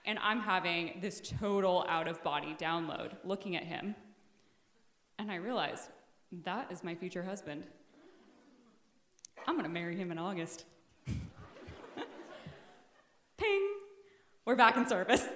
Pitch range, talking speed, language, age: 180-260 Hz, 115 wpm, English, 20-39